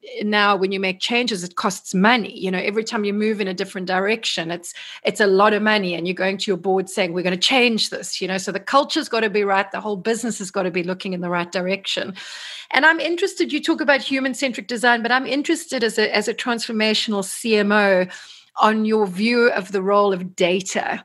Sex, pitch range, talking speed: female, 195-235 Hz, 235 wpm